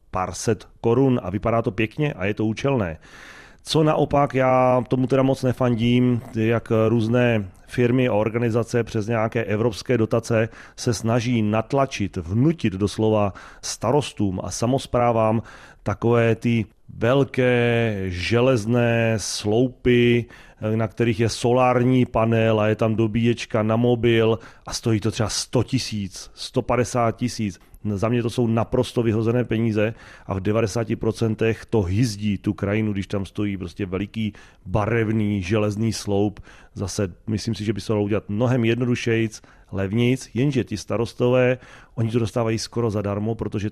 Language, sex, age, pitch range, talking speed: Czech, male, 30-49, 105-120 Hz, 140 wpm